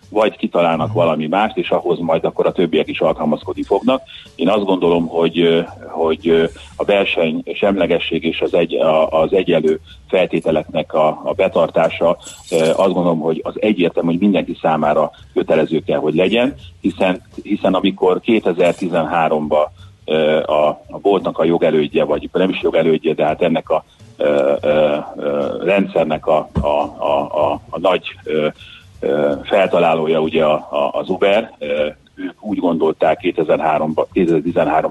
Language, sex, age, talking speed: Hungarian, male, 30-49, 120 wpm